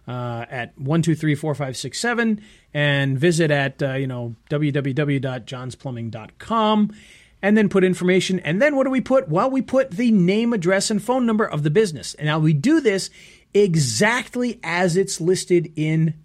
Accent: American